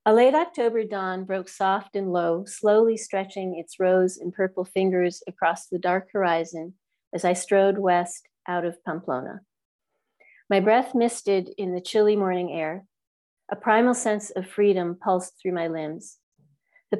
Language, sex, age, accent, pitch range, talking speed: English, female, 40-59, American, 180-205 Hz, 155 wpm